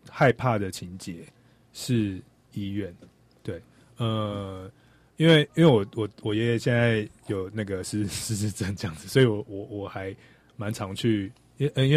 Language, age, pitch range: Chinese, 20-39, 100-120 Hz